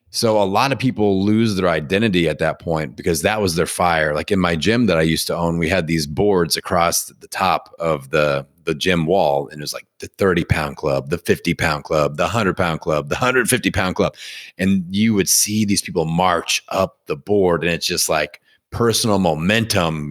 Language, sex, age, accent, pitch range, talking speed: English, male, 30-49, American, 80-100 Hz, 220 wpm